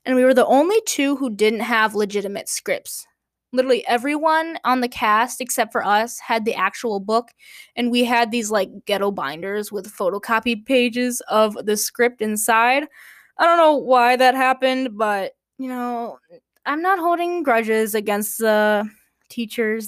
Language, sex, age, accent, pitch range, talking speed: English, female, 10-29, American, 215-260 Hz, 160 wpm